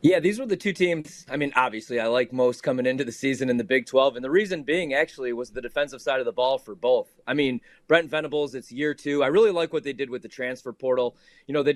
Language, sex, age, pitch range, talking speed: English, male, 30-49, 130-170 Hz, 275 wpm